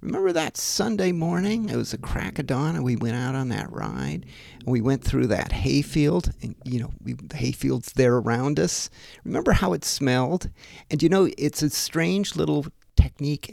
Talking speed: 195 wpm